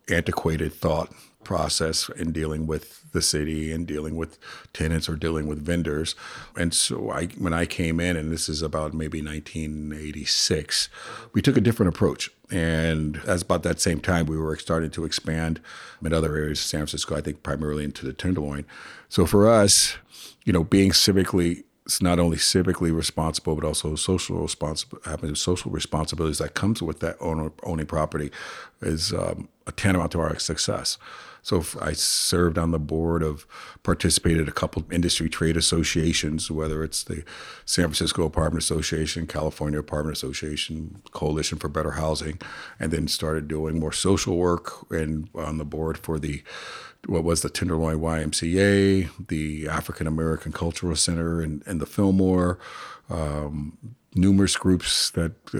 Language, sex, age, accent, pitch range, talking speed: English, male, 50-69, American, 75-90 Hz, 160 wpm